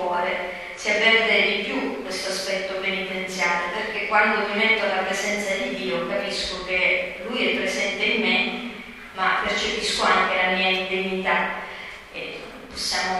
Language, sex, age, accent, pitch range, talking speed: Italian, female, 30-49, native, 190-210 Hz, 140 wpm